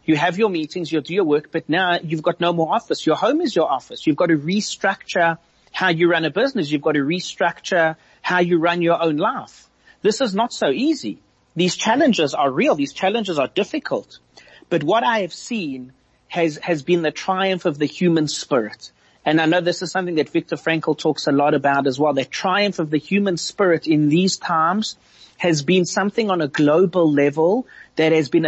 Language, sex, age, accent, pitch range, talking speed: English, male, 30-49, South African, 150-180 Hz, 210 wpm